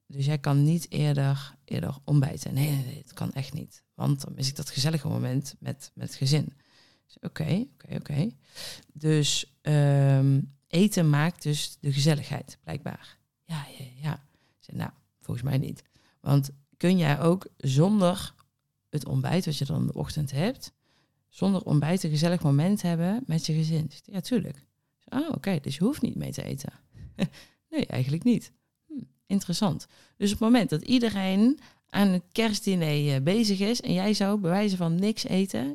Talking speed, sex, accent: 175 wpm, female, Dutch